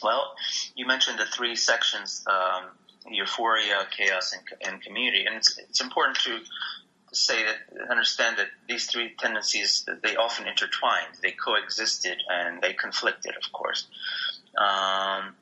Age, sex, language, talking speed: 30-49, male, English, 135 wpm